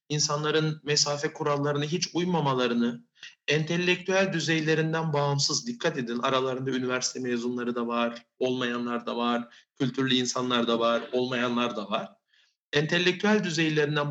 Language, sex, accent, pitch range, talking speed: Turkish, male, native, 130-170 Hz, 115 wpm